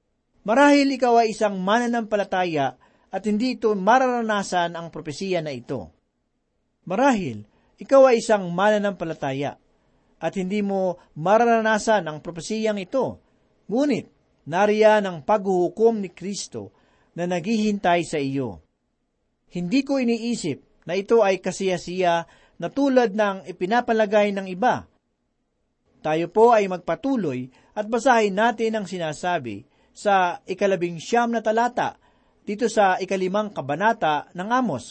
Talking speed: 115 wpm